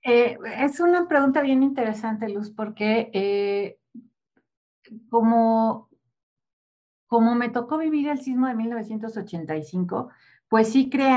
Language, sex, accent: Spanish, female, Mexican